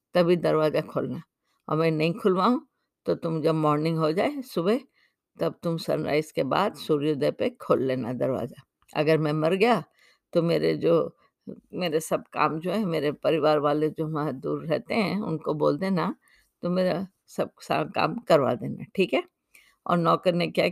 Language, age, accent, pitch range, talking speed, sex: Hindi, 50-69, native, 155-195 Hz, 170 wpm, female